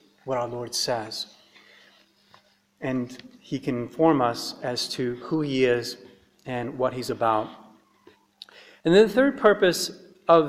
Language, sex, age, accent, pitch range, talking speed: English, male, 40-59, American, 140-175 Hz, 135 wpm